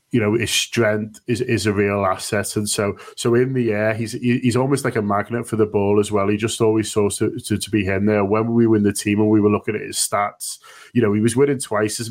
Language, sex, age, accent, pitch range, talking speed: English, male, 20-39, British, 110-140 Hz, 280 wpm